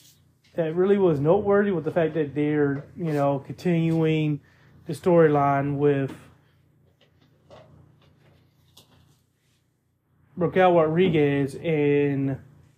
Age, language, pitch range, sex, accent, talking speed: 30-49, English, 135-170 Hz, male, American, 85 wpm